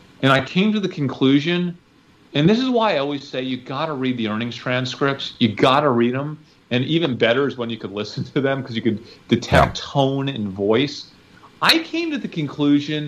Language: English